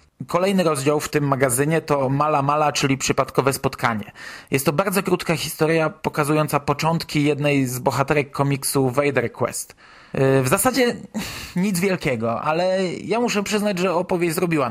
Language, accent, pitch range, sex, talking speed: Polish, native, 140-175 Hz, male, 145 wpm